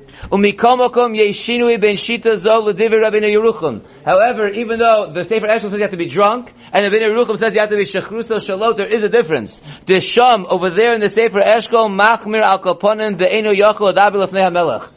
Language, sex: English, male